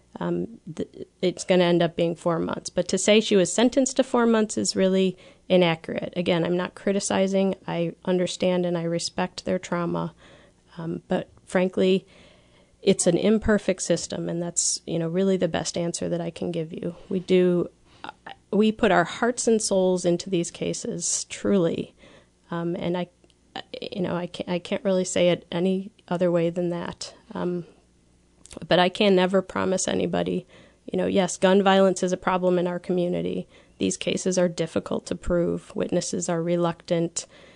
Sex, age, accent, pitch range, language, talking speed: female, 30-49, American, 170-190 Hz, English, 170 wpm